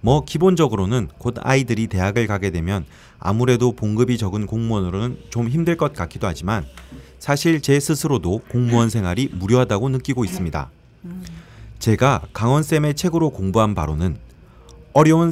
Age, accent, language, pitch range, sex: 30-49, native, Korean, 95-130 Hz, male